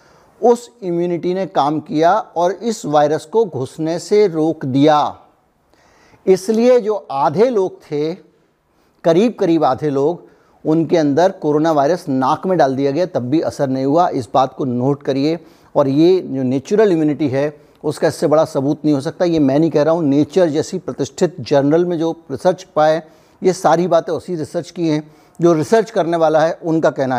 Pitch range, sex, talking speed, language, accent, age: 150-185 Hz, male, 180 wpm, Hindi, native, 60-79